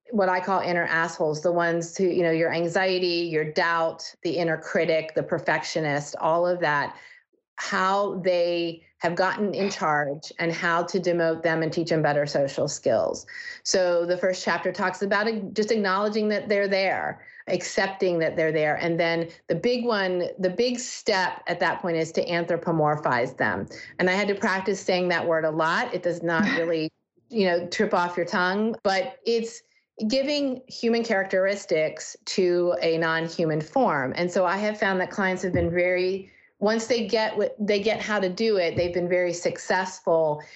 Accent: American